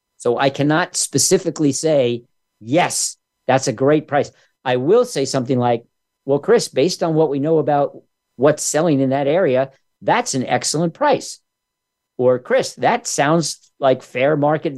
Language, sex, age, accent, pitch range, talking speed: English, male, 50-69, American, 120-160 Hz, 160 wpm